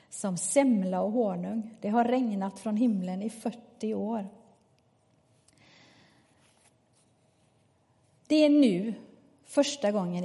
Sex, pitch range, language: female, 190-230 Hz, English